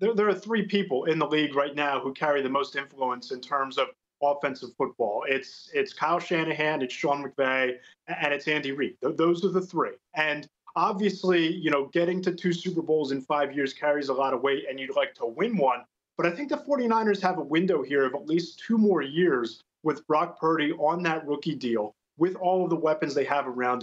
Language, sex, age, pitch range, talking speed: English, male, 30-49, 145-185 Hz, 220 wpm